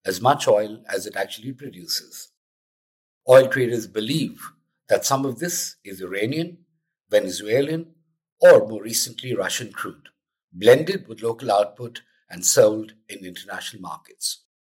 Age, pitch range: 50-69, 115-175 Hz